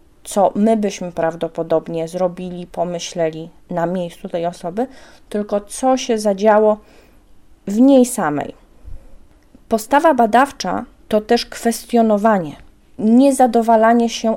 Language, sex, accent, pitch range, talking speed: Polish, female, native, 195-245 Hz, 100 wpm